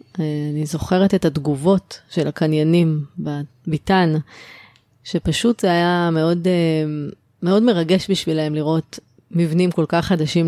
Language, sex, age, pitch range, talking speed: Hebrew, female, 20-39, 155-180 Hz, 110 wpm